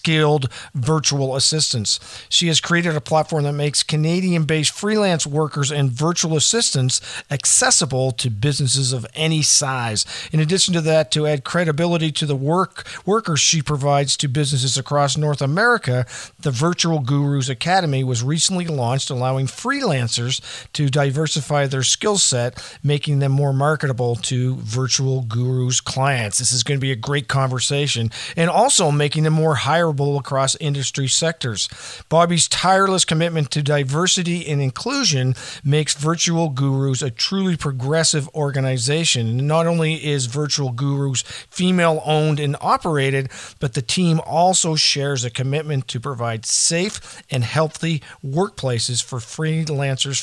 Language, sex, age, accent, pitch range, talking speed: English, male, 50-69, American, 130-160 Hz, 140 wpm